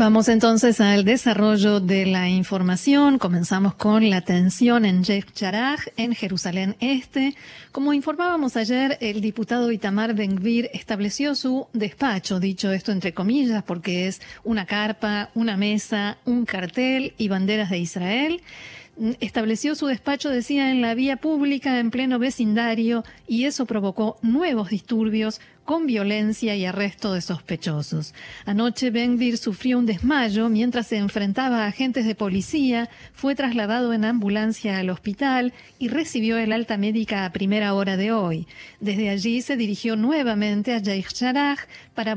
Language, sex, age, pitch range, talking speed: Spanish, female, 40-59, 205-245 Hz, 145 wpm